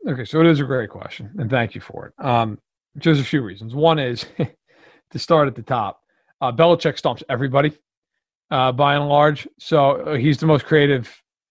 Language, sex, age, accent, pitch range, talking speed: English, male, 40-59, American, 120-155 Hz, 200 wpm